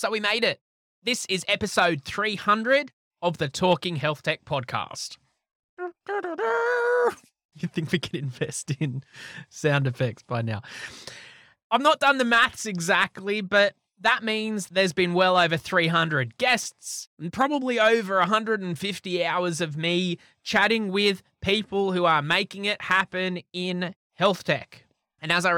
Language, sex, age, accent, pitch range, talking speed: English, male, 20-39, Australian, 135-190 Hz, 140 wpm